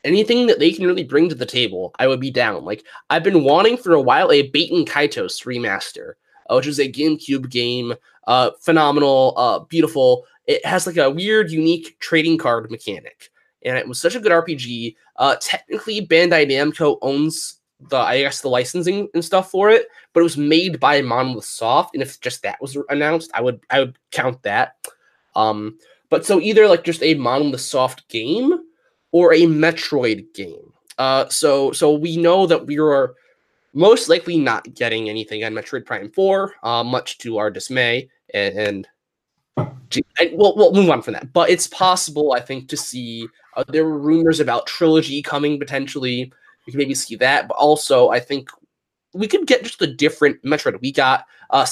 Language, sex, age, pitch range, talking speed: English, male, 20-39, 130-170 Hz, 190 wpm